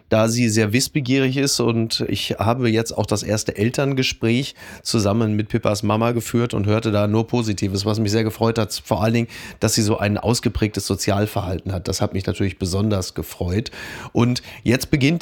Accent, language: German, German